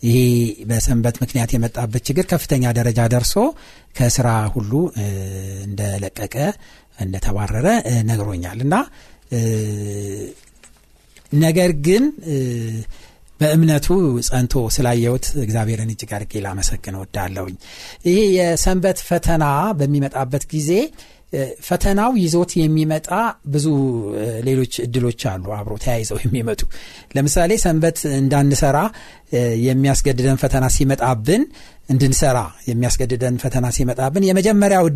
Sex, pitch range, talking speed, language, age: male, 115-165 Hz, 80 wpm, Amharic, 60-79